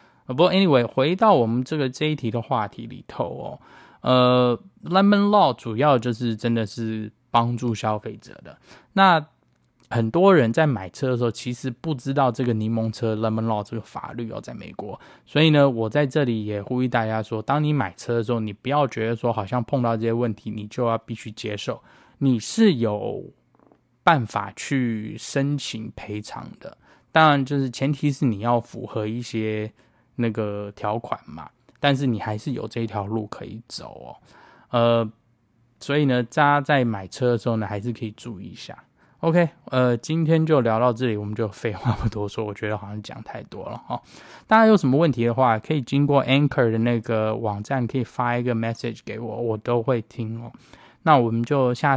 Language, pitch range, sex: Chinese, 110-140 Hz, male